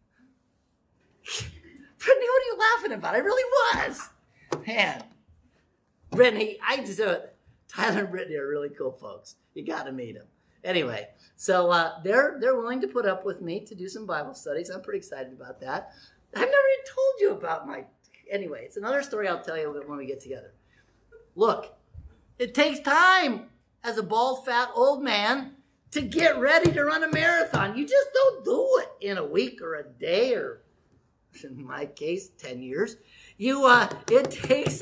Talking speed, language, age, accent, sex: 180 wpm, English, 40-59, American, male